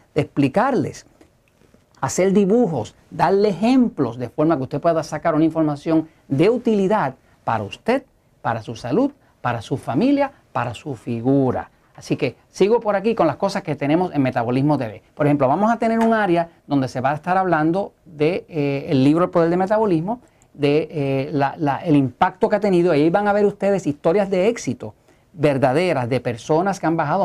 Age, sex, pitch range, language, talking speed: 40-59, male, 135-180 Hz, Spanish, 185 wpm